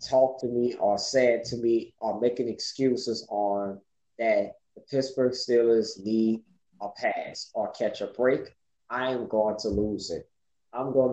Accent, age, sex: American, 20-39, male